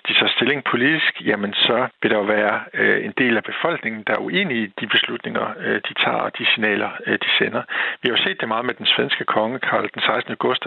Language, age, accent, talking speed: Danish, 60-79, native, 240 wpm